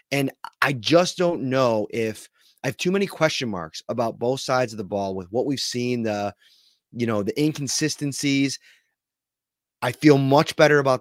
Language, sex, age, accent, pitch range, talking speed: English, male, 30-49, American, 110-140 Hz, 175 wpm